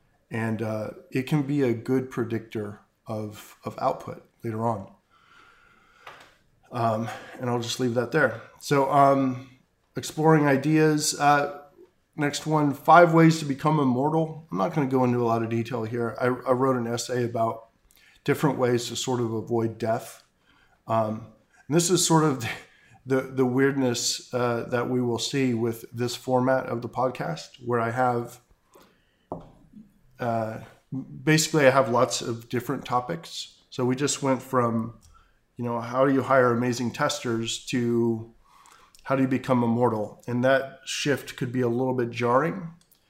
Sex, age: male, 40-59